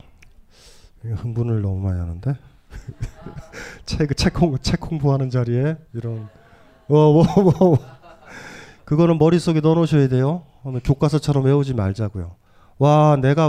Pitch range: 110-150 Hz